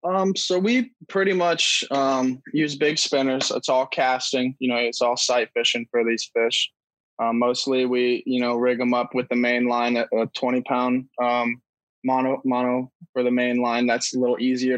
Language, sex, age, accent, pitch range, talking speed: English, male, 20-39, American, 125-145 Hz, 195 wpm